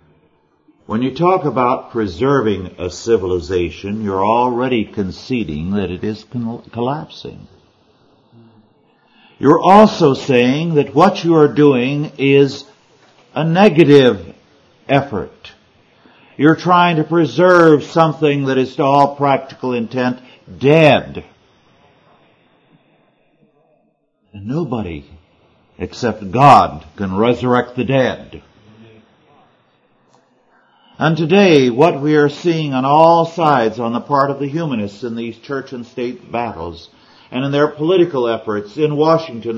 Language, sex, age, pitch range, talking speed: English, male, 60-79, 110-150 Hz, 110 wpm